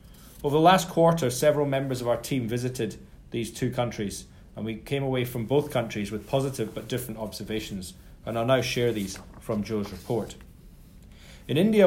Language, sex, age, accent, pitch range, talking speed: English, male, 30-49, British, 110-135 Hz, 175 wpm